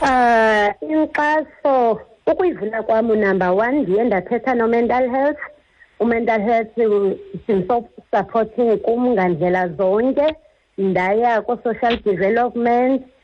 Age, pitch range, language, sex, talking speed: 50-69, 195-240 Hz, English, female, 95 wpm